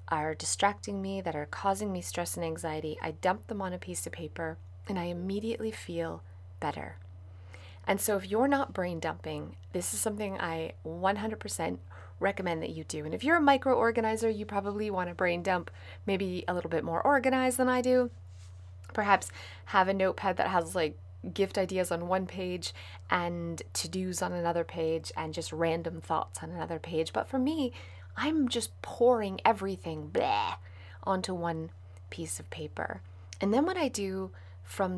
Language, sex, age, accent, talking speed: English, female, 30-49, American, 180 wpm